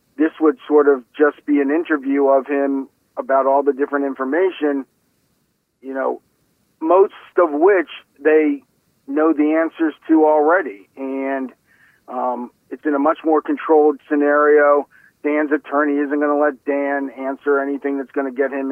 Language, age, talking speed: English, 40-59, 155 wpm